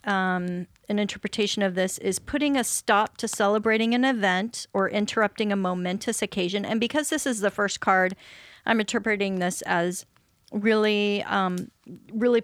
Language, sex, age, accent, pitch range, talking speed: English, female, 30-49, American, 185-220 Hz, 155 wpm